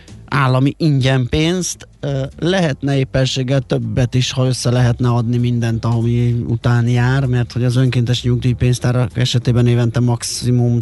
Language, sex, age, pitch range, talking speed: Hungarian, male, 30-49, 115-130 Hz, 130 wpm